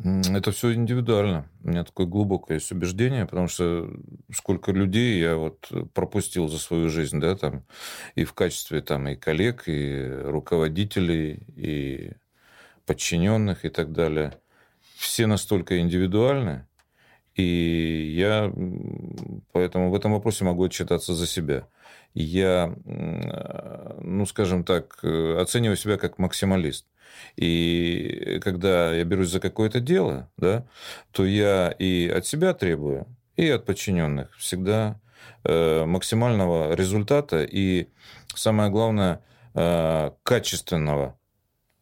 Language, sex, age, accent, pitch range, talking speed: Russian, male, 40-59, native, 80-105 Hz, 110 wpm